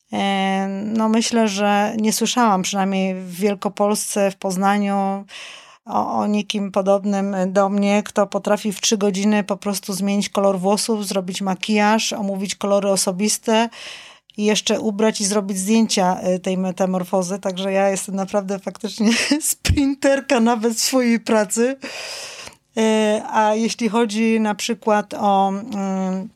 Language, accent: Polish, native